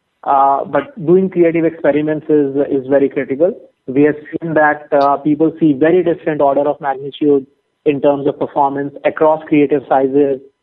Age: 30-49